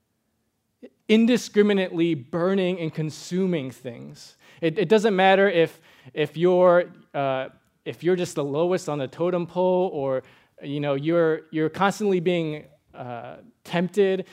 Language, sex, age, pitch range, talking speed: English, male, 20-39, 130-175 Hz, 130 wpm